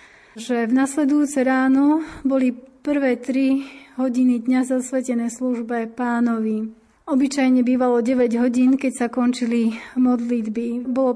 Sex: female